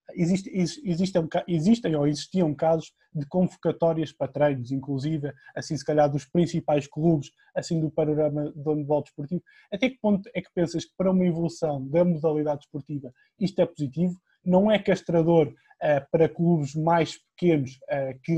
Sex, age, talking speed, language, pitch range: male, 20-39, 160 wpm, Portuguese, 155-190 Hz